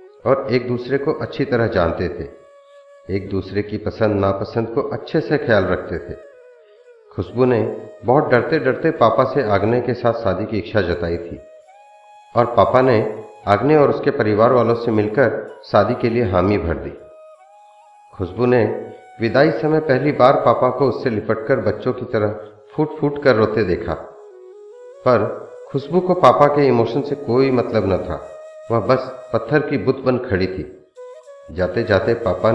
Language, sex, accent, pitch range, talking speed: Hindi, male, native, 110-155 Hz, 165 wpm